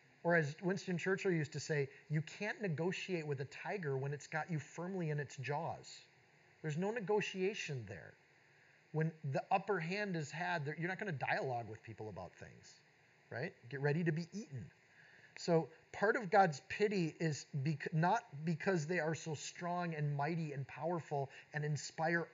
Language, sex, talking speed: English, male, 170 wpm